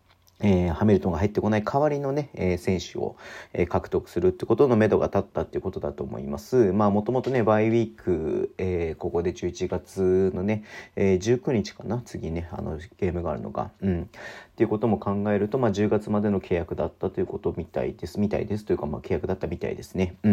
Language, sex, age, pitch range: Japanese, male, 40-59, 90-110 Hz